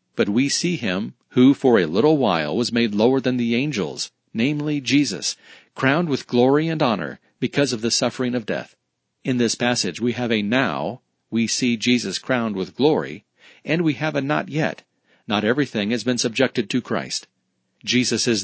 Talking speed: 180 wpm